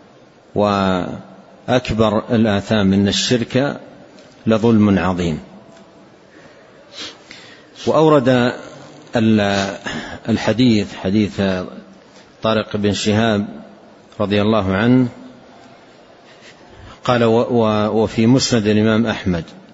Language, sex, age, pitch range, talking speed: Arabic, male, 50-69, 100-115 Hz, 60 wpm